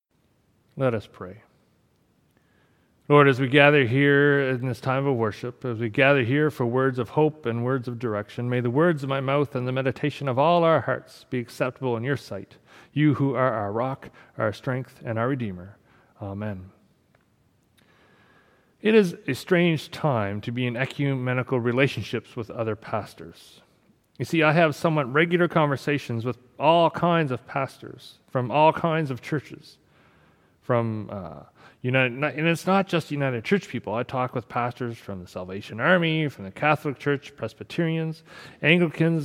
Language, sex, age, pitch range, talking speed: English, male, 40-59, 115-150 Hz, 165 wpm